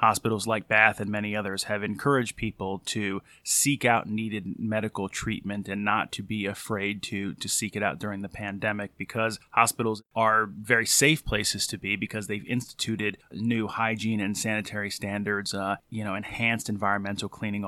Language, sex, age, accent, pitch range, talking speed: English, male, 30-49, American, 100-115 Hz, 170 wpm